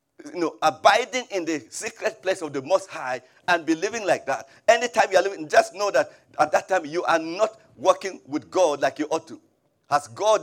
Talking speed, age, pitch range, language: 215 wpm, 50-69, 140-190 Hz, English